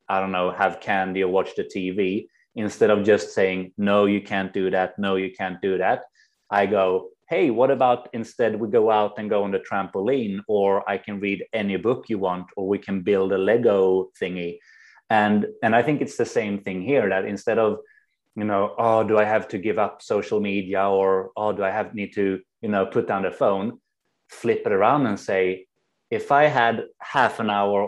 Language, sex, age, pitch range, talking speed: English, male, 30-49, 95-110 Hz, 215 wpm